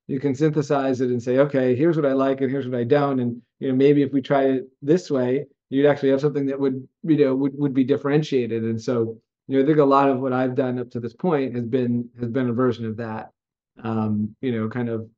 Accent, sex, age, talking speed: American, male, 40-59, 265 wpm